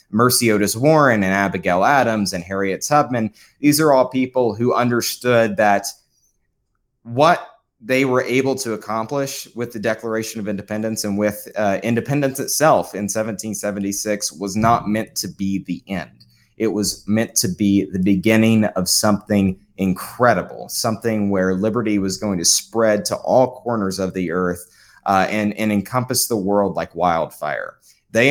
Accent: American